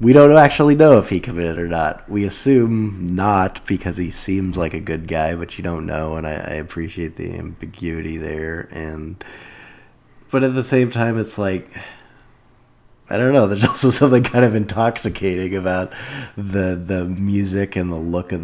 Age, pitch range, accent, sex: 20-39, 80-105 Hz, American, male